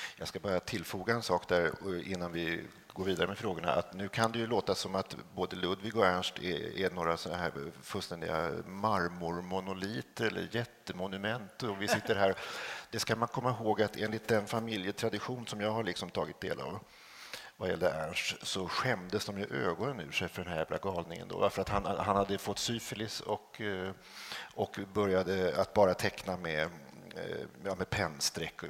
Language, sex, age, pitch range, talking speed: Swedish, male, 50-69, 95-115 Hz, 180 wpm